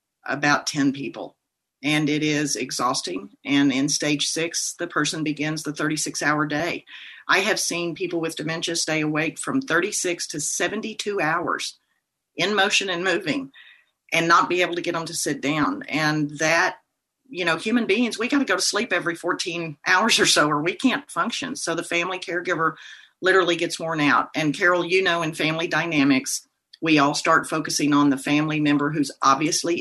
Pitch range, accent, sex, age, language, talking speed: 150-195 Hz, American, female, 40-59, English, 185 wpm